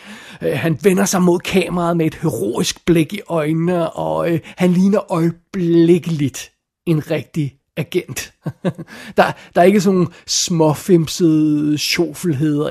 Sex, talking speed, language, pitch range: male, 115 wpm, Danish, 155-180 Hz